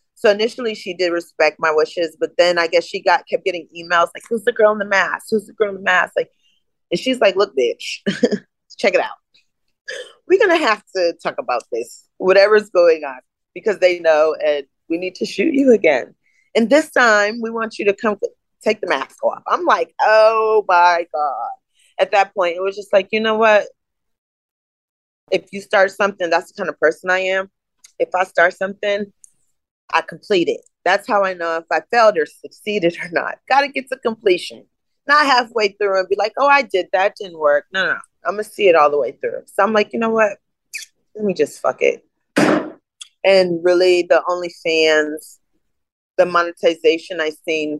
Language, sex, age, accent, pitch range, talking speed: English, female, 30-49, American, 170-260 Hz, 205 wpm